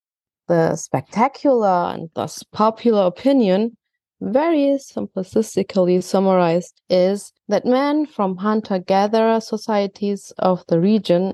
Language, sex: English, female